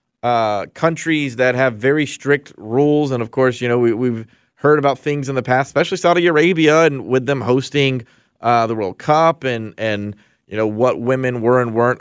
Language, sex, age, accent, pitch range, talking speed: English, male, 30-49, American, 115-140 Hz, 200 wpm